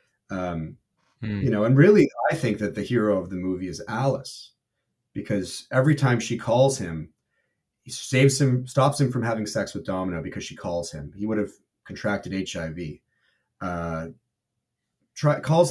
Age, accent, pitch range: 30-49, American, 105-135 Hz